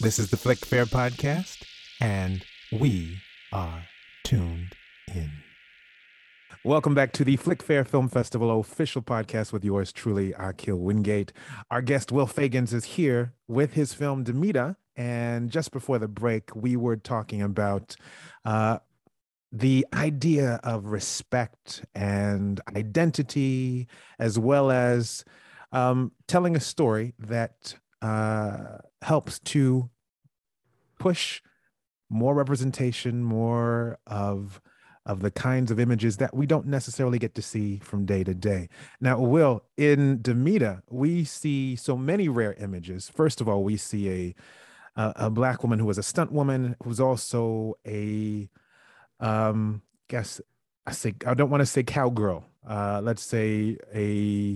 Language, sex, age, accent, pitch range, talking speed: English, male, 30-49, American, 105-130 Hz, 140 wpm